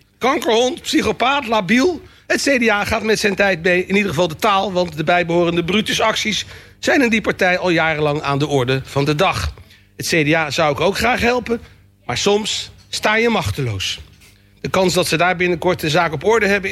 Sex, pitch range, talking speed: male, 170-225 Hz, 195 wpm